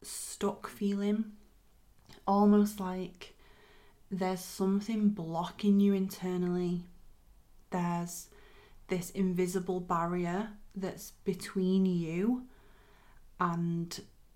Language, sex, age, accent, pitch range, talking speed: English, female, 30-49, British, 170-190 Hz, 70 wpm